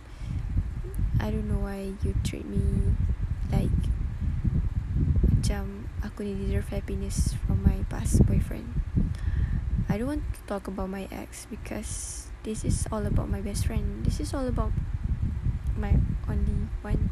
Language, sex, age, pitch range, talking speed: Malay, female, 10-29, 85-105 Hz, 145 wpm